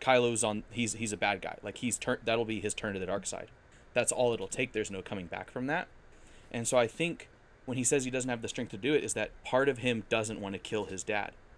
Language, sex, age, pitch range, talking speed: English, male, 20-39, 105-125 Hz, 280 wpm